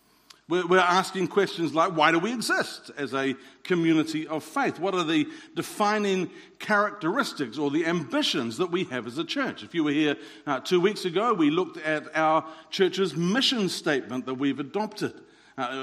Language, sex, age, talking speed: English, male, 50-69, 175 wpm